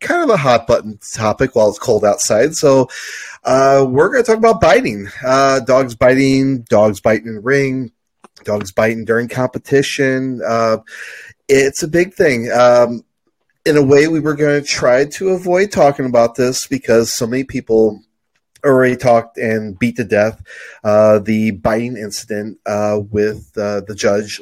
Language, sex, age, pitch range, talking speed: English, male, 30-49, 110-140 Hz, 165 wpm